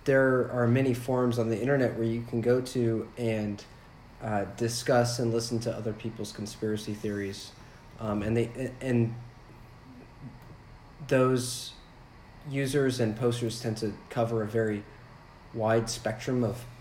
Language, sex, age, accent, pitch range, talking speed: English, male, 30-49, American, 110-125 Hz, 135 wpm